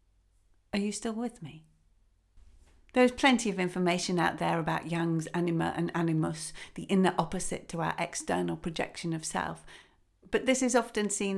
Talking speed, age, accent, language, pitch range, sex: 160 wpm, 40-59, British, English, 165-235 Hz, female